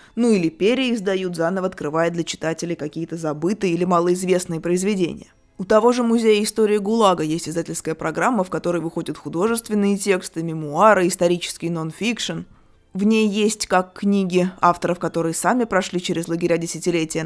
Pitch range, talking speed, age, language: 170-205 Hz, 145 wpm, 20-39, Russian